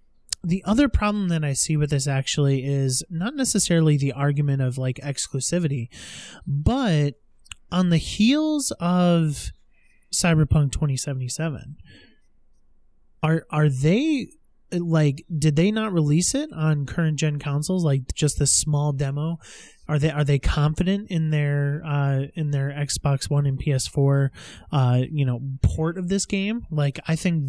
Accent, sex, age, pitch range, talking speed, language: American, male, 30-49, 135-160 Hz, 145 wpm, English